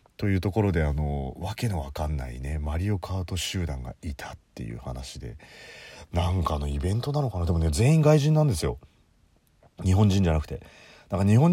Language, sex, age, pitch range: Japanese, male, 30-49, 75-105 Hz